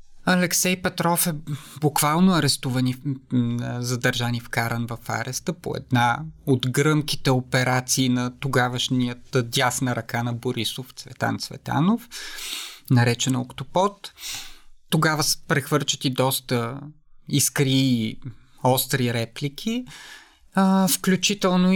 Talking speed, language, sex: 100 wpm, Bulgarian, male